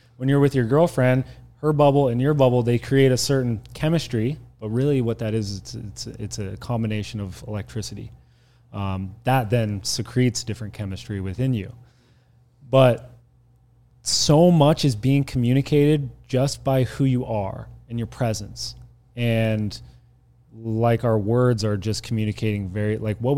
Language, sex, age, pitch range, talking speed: English, male, 30-49, 110-125 Hz, 150 wpm